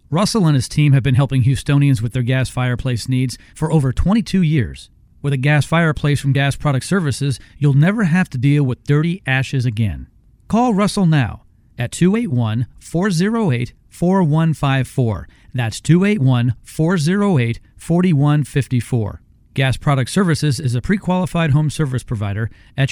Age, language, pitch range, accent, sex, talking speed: 40-59, English, 125-160 Hz, American, male, 135 wpm